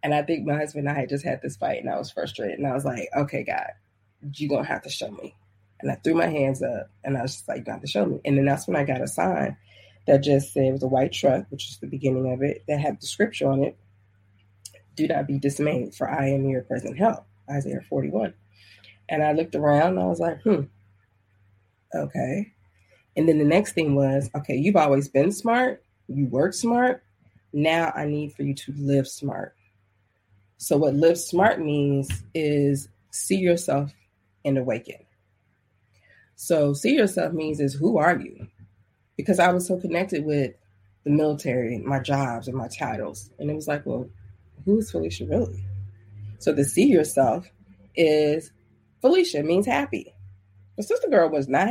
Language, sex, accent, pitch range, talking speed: English, female, American, 100-150 Hz, 200 wpm